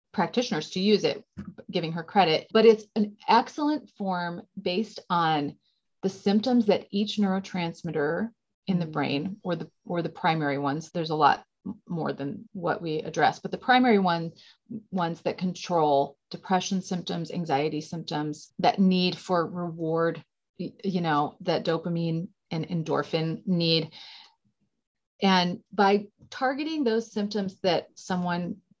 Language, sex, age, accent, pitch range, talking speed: English, female, 30-49, American, 170-215 Hz, 135 wpm